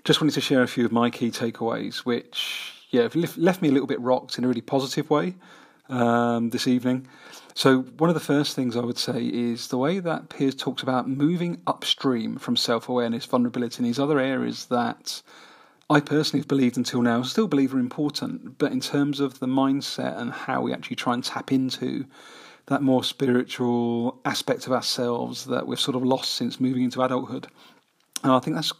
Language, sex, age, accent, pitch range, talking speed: English, male, 40-59, British, 125-140 Hz, 200 wpm